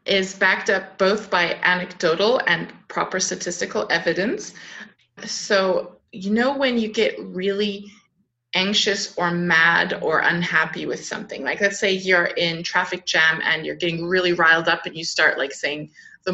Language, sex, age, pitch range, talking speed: English, female, 20-39, 180-215 Hz, 160 wpm